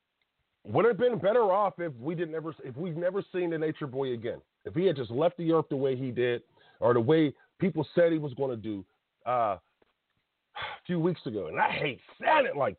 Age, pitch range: 40-59, 150-190 Hz